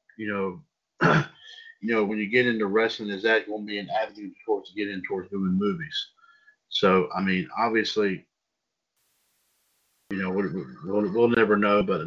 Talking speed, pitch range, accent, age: 175 wpm, 105-170 Hz, American, 50-69